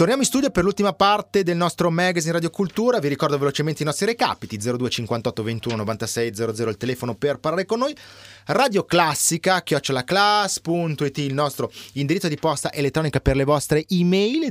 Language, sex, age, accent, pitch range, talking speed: Italian, male, 30-49, native, 115-175 Hz, 160 wpm